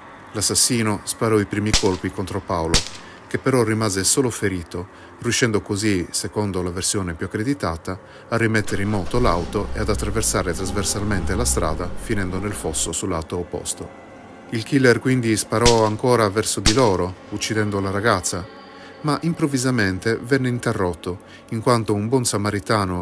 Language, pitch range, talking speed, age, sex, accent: Italian, 95-115 Hz, 145 wpm, 30-49, male, native